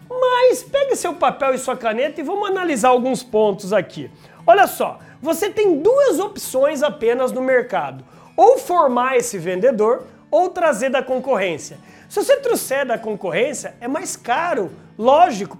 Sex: male